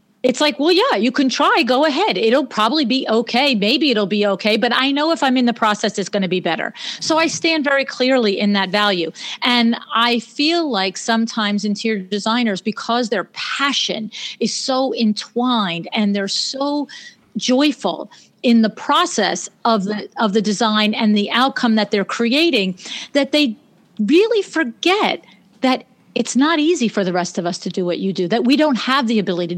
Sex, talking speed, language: female, 190 wpm, English